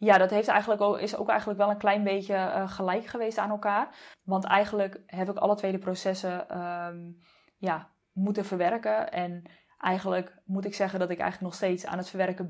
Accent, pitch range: Dutch, 180-205 Hz